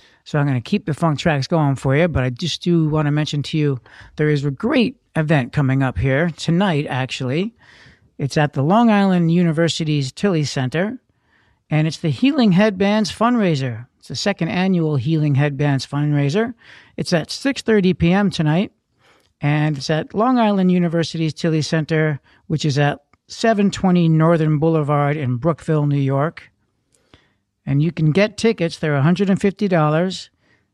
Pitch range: 145-190 Hz